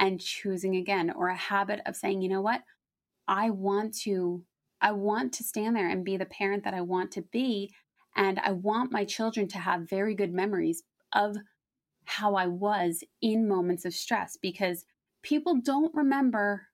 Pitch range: 190-230 Hz